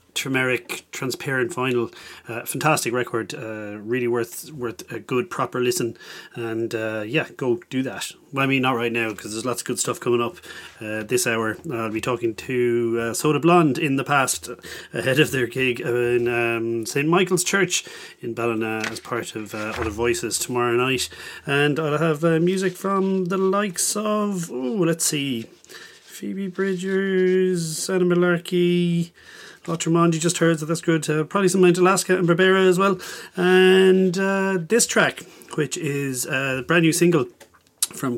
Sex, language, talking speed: male, English, 175 wpm